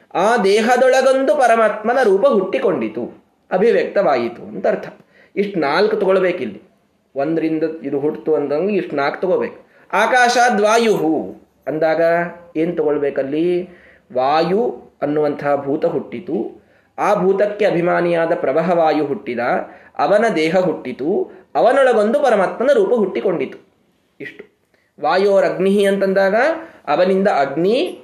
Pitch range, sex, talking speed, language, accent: 160-210 Hz, male, 95 wpm, Kannada, native